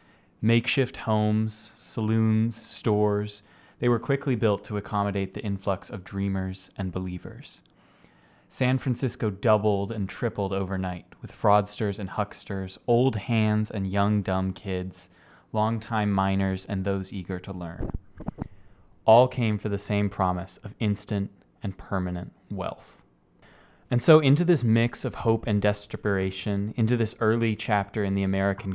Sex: male